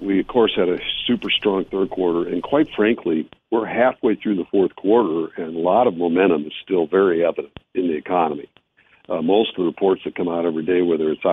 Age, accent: 60-79, American